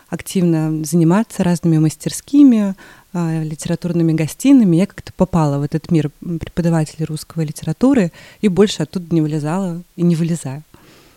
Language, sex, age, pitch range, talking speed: Russian, female, 20-39, 165-195 Hz, 125 wpm